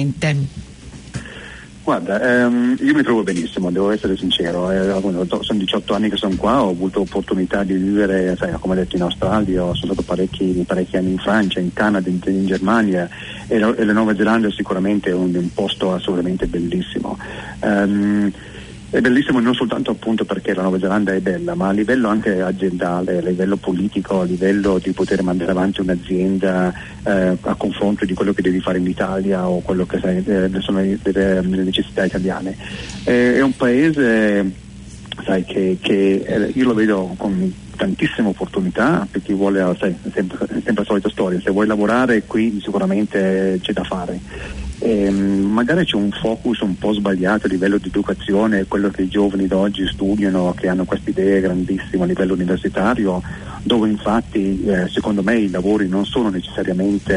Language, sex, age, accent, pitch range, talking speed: Italian, male, 40-59, native, 95-105 Hz, 170 wpm